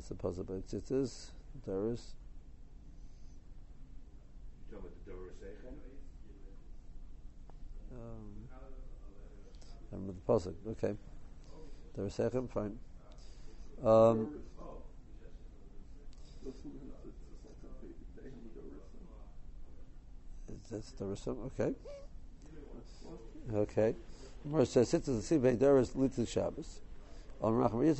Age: 60-79